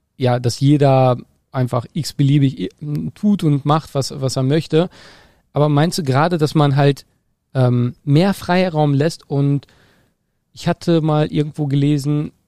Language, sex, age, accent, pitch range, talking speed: German, male, 40-59, German, 135-155 Hz, 140 wpm